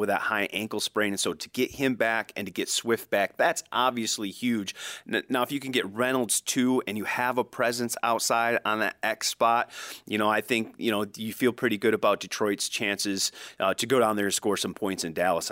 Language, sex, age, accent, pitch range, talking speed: English, male, 30-49, American, 105-125 Hz, 230 wpm